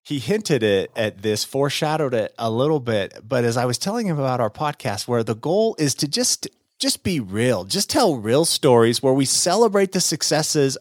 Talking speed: 205 wpm